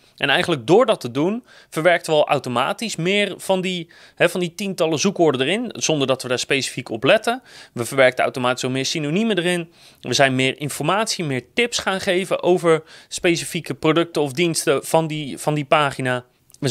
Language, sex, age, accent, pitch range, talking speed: Dutch, male, 30-49, Dutch, 140-190 Hz, 175 wpm